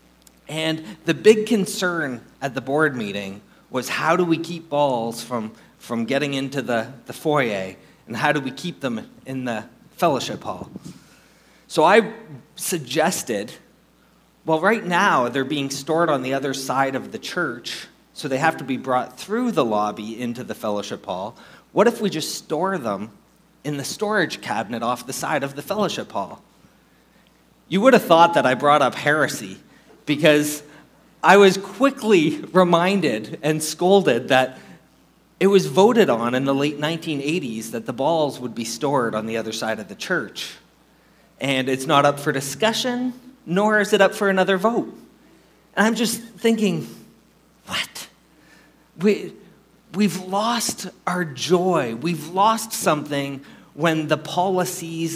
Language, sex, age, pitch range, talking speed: English, male, 30-49, 135-190 Hz, 155 wpm